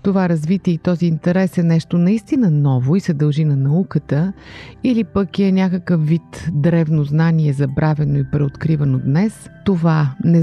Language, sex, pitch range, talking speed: Bulgarian, female, 150-180 Hz, 155 wpm